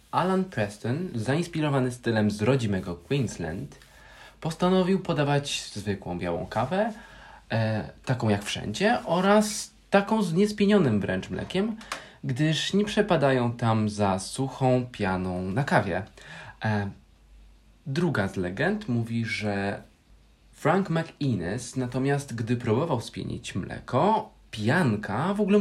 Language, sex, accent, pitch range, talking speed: Polish, male, native, 100-150 Hz, 105 wpm